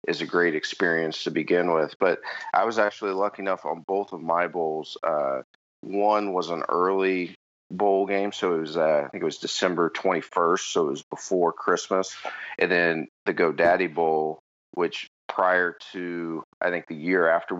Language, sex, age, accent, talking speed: English, male, 40-59, American, 180 wpm